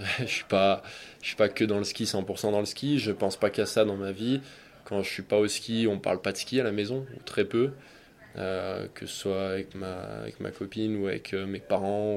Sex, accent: male, French